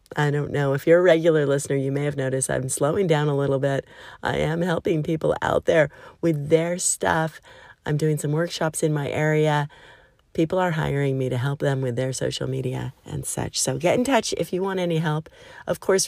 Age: 40-59